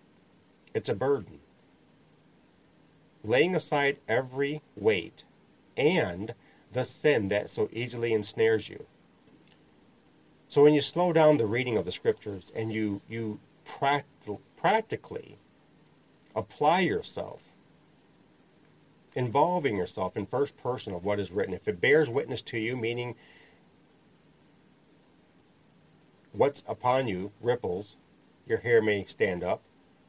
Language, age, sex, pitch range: English, 40-59, male, 105-165 Hz